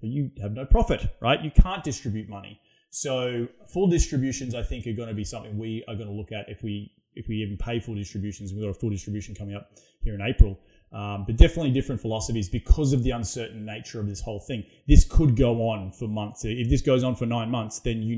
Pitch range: 105-135 Hz